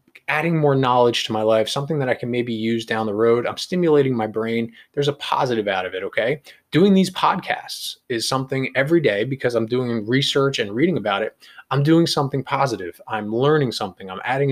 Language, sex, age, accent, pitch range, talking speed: English, male, 20-39, American, 115-150 Hz, 205 wpm